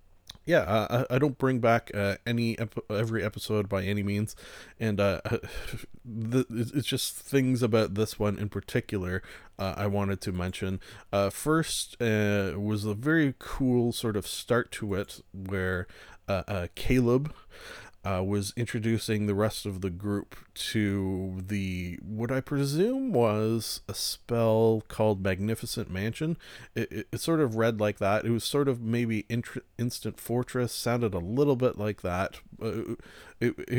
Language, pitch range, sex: English, 100-120 Hz, male